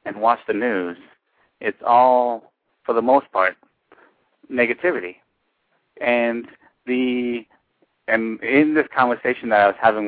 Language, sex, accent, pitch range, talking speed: English, male, American, 110-135 Hz, 125 wpm